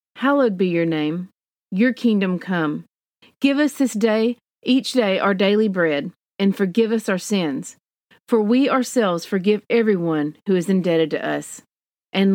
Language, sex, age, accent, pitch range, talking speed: English, female, 40-59, American, 180-260 Hz, 155 wpm